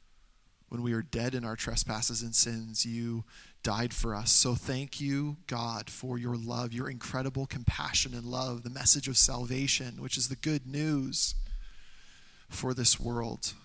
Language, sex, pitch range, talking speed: English, male, 115-130 Hz, 165 wpm